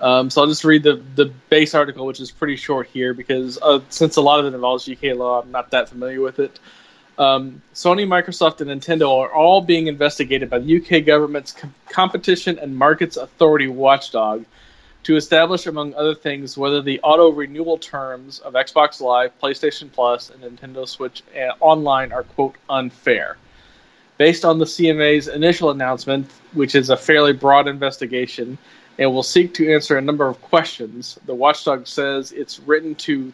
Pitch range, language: 130-155 Hz, English